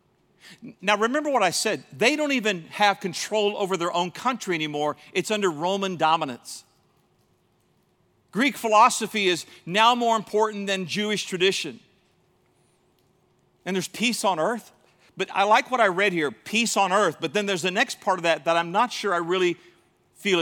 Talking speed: 170 wpm